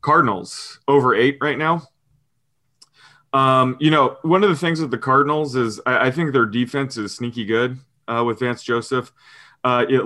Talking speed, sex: 180 wpm, male